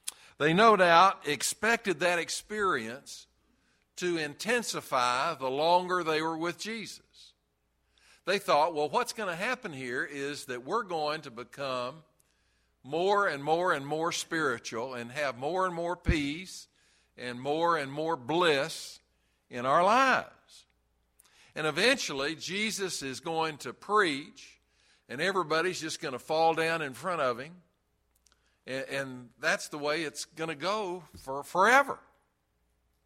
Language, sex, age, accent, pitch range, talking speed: English, male, 60-79, American, 125-170 Hz, 140 wpm